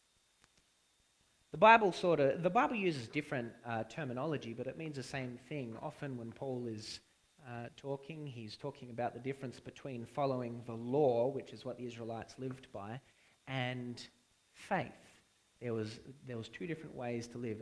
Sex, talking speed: male, 165 wpm